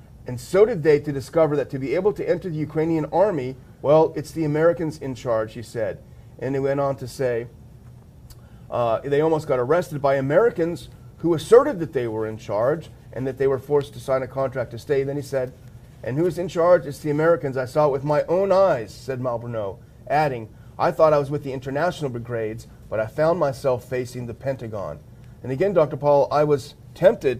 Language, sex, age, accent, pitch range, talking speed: English, male, 40-59, American, 125-150 Hz, 210 wpm